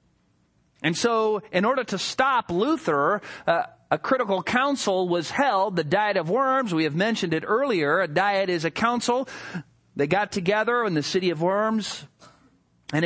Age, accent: 40-59, American